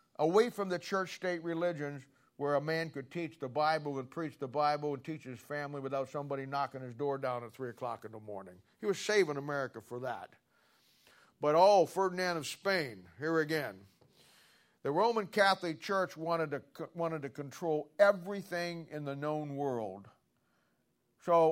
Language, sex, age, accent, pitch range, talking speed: English, male, 50-69, American, 145-200 Hz, 170 wpm